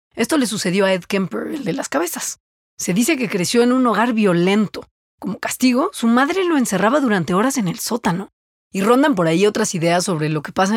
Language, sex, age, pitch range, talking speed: English, female, 30-49, 180-240 Hz, 215 wpm